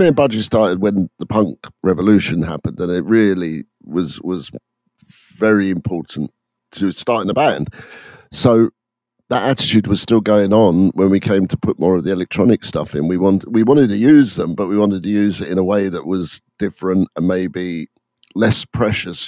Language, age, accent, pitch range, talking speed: English, 50-69, British, 95-120 Hz, 190 wpm